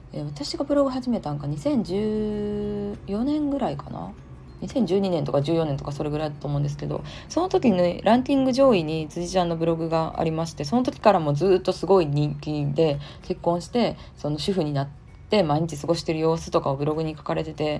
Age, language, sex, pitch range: 20-39, Japanese, female, 145-200 Hz